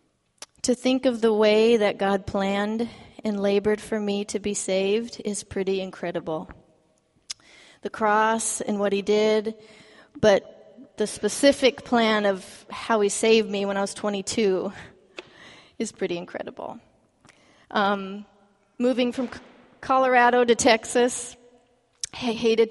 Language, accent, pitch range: English, American, 210-250 Hz